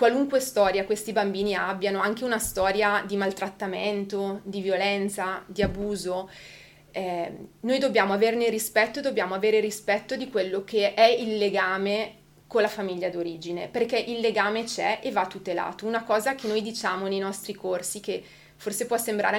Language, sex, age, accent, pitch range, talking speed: Italian, female, 30-49, native, 195-230 Hz, 160 wpm